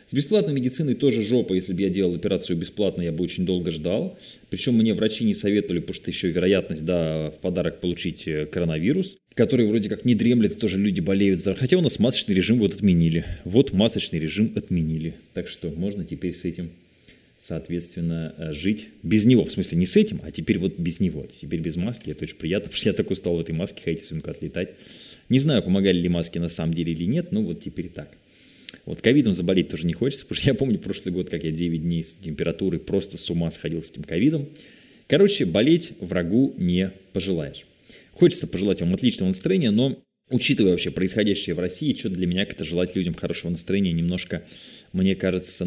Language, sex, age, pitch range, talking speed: Russian, male, 20-39, 85-120 Hz, 200 wpm